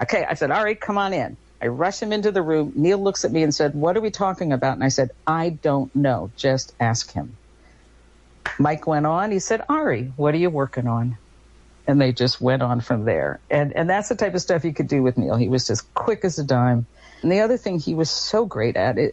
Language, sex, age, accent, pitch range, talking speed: English, female, 50-69, American, 130-195 Hz, 250 wpm